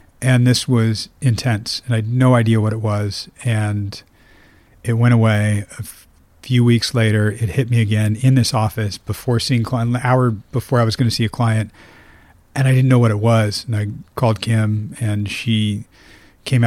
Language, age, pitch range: English, 40-59, 105-125 Hz